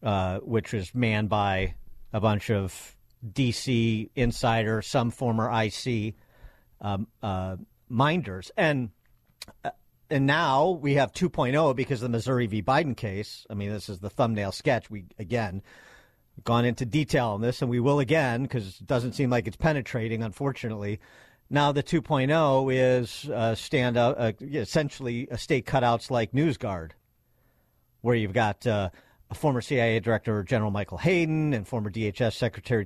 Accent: American